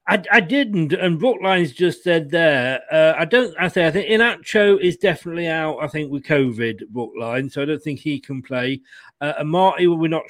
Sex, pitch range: male, 125-175 Hz